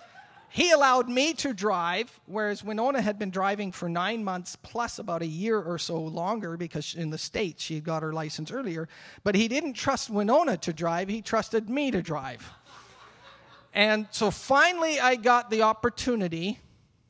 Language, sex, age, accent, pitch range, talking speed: English, male, 40-59, American, 140-205 Hz, 170 wpm